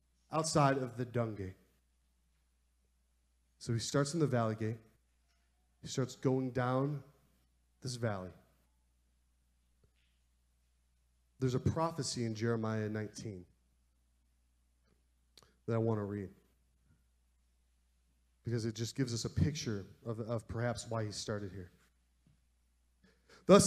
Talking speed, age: 110 wpm, 30-49